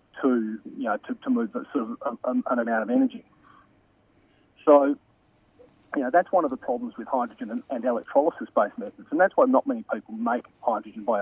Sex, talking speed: male, 195 wpm